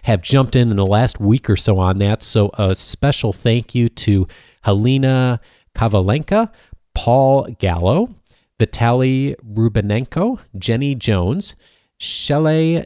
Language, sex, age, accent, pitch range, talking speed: English, male, 30-49, American, 100-135 Hz, 120 wpm